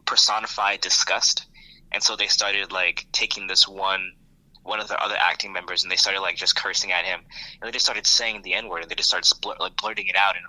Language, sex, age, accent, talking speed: English, male, 20-39, American, 230 wpm